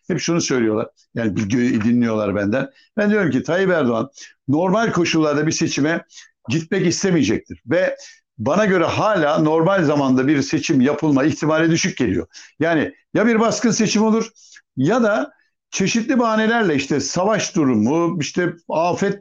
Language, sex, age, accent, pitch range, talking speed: Turkish, male, 60-79, native, 125-200 Hz, 135 wpm